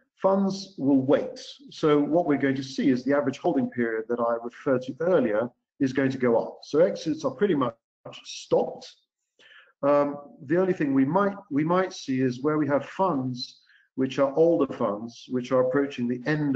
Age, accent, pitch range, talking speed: 50-69, British, 130-165 Hz, 190 wpm